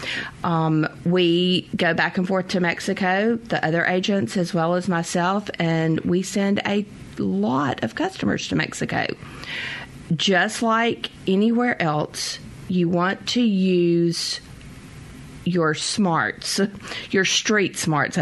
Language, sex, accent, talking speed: English, female, American, 120 wpm